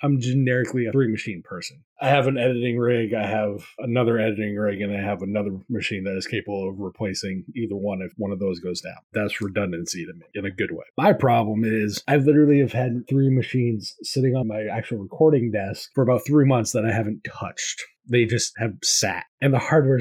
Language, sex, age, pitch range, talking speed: English, male, 30-49, 105-130 Hz, 215 wpm